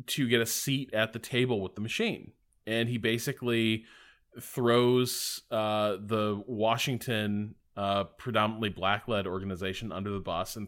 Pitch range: 100-125 Hz